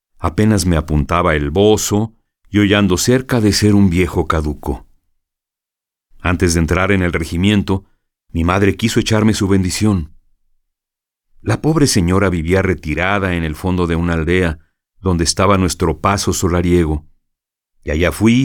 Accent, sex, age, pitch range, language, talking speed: Mexican, male, 50-69, 80-105 Hz, Spanish, 145 wpm